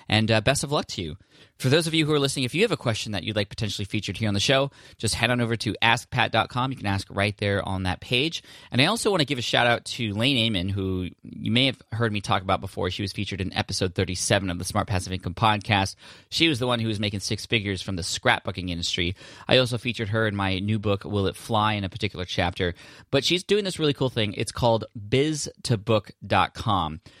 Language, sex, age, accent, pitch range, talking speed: English, male, 20-39, American, 95-120 Hz, 245 wpm